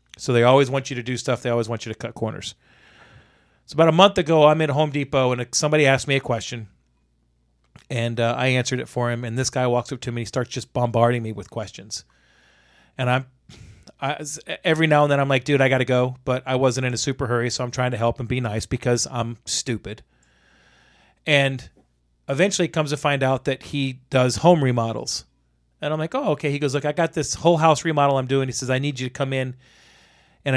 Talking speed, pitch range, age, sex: 235 wpm, 120-145 Hz, 40-59, male